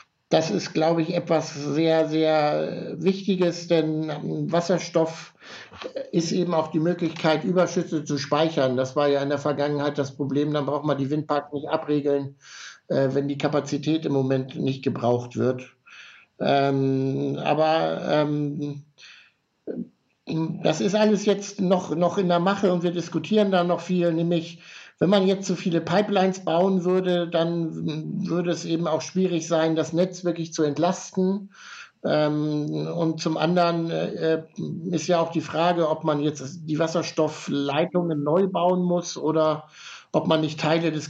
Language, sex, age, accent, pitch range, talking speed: German, male, 60-79, German, 150-175 Hz, 145 wpm